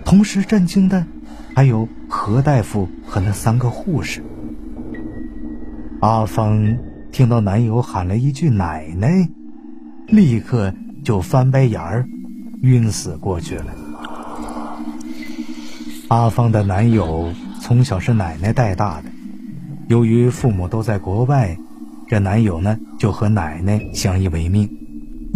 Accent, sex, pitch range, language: native, male, 95-130 Hz, Chinese